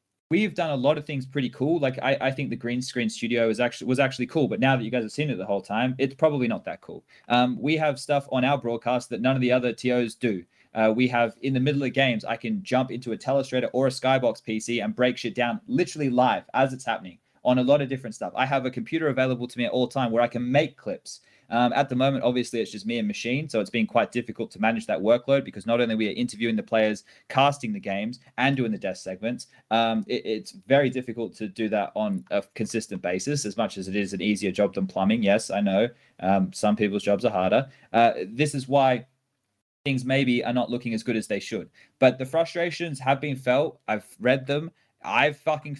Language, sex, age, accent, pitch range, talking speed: English, male, 20-39, Australian, 115-135 Hz, 245 wpm